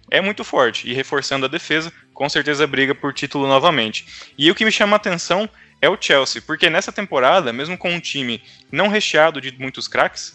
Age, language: 20-39, Portuguese